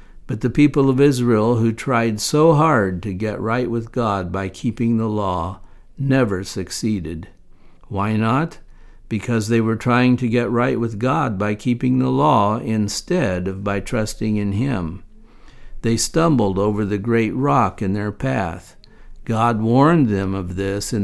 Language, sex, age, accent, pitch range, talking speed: English, male, 60-79, American, 100-130 Hz, 160 wpm